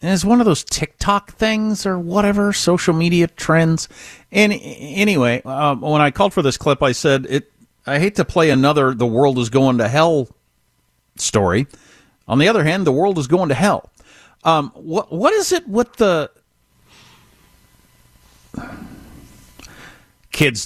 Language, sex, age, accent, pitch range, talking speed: English, male, 50-69, American, 120-190 Hz, 155 wpm